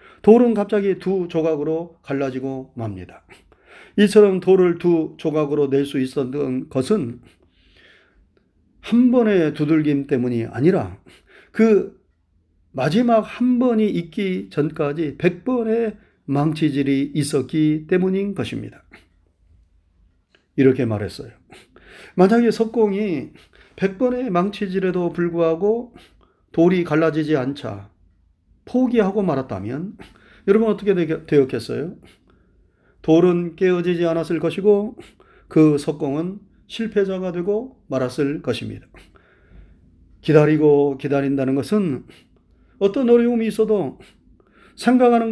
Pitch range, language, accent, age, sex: 130-200 Hz, Korean, native, 40-59, male